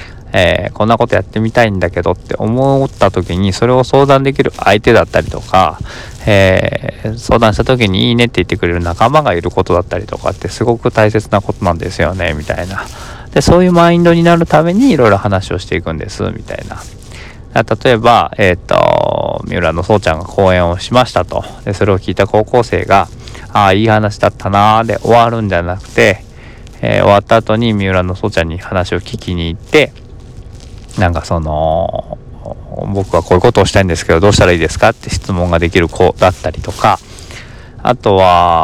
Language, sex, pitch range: Japanese, male, 90-115 Hz